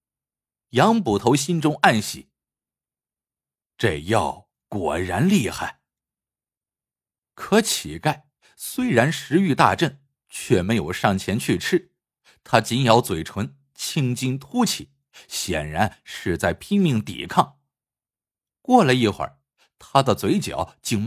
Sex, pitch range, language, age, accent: male, 100-155 Hz, Chinese, 50-69, native